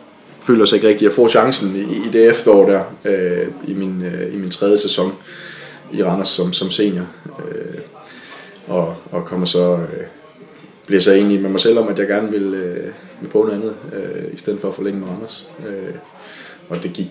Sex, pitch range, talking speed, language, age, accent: male, 90-105 Hz, 205 wpm, Danish, 20-39, native